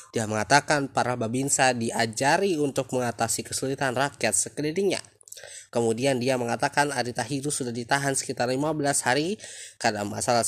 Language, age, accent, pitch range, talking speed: Indonesian, 20-39, native, 110-145 Hz, 120 wpm